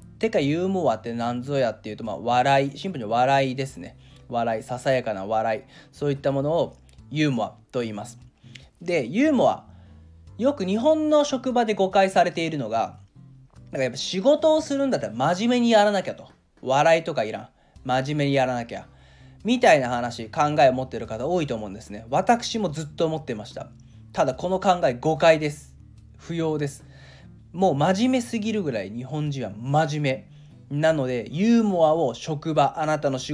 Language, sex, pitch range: Japanese, male, 120-185 Hz